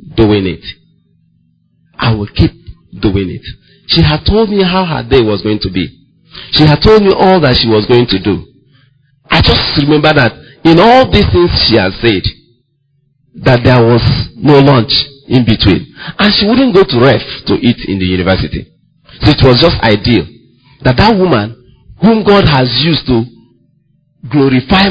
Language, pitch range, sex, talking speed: English, 115-160 Hz, male, 175 wpm